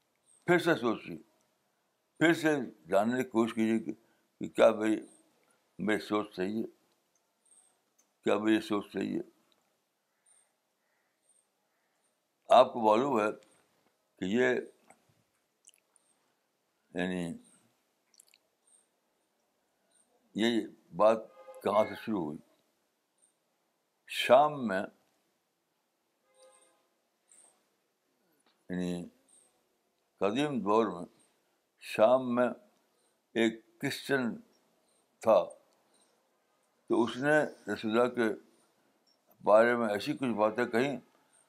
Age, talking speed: 60-79, 70 wpm